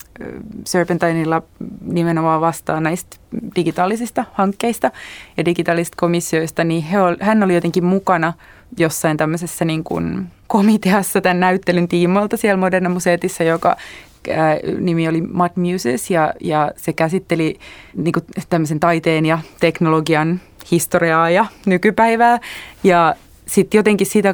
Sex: female